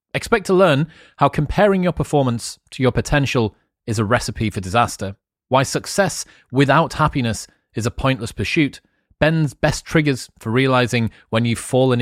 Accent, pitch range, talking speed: British, 100-130 Hz, 155 wpm